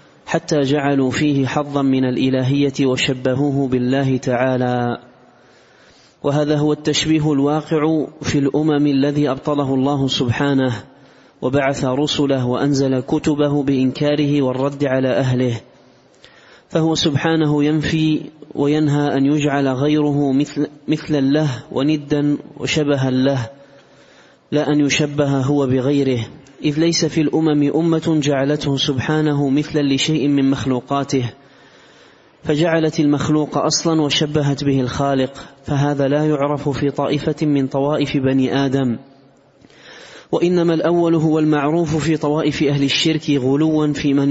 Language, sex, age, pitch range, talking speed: Arabic, male, 30-49, 135-150 Hz, 110 wpm